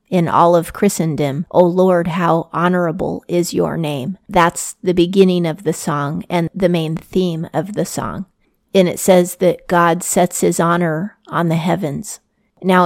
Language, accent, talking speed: English, American, 170 wpm